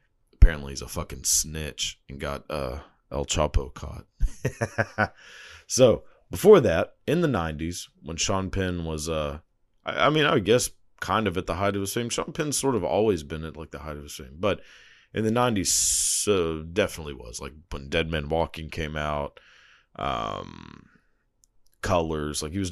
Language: English